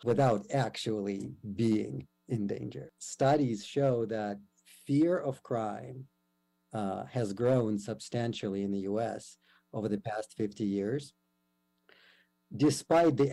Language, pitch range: English, 100-130 Hz